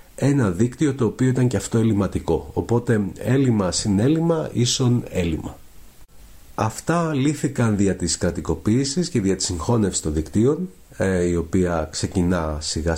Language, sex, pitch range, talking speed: Greek, male, 90-130 Hz, 120 wpm